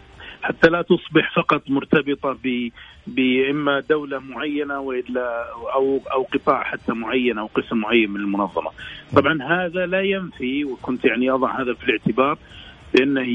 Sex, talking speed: male, 140 wpm